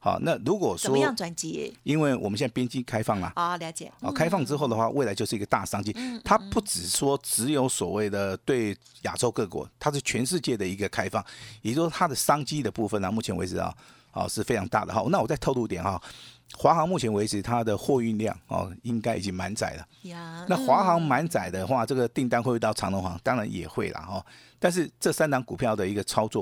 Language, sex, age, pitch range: Chinese, male, 50-69, 105-150 Hz